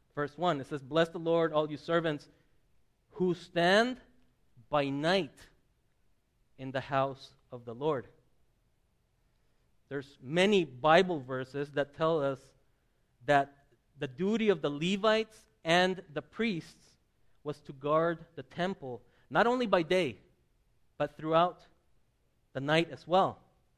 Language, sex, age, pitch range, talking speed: English, male, 30-49, 130-165 Hz, 130 wpm